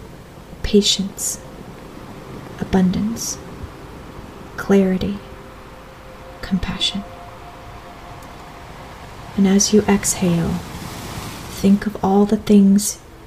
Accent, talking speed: American, 60 wpm